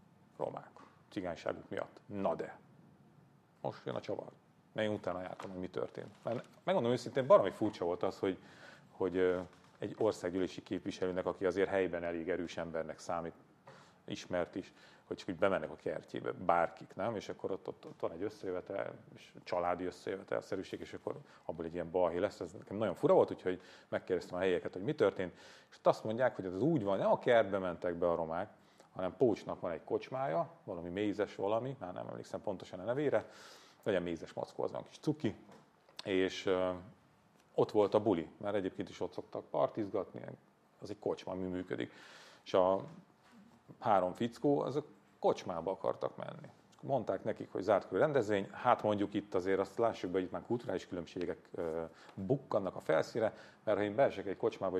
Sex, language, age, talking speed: male, Hungarian, 40-59, 175 wpm